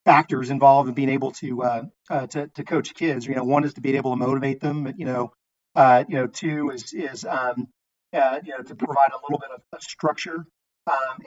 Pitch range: 130-150 Hz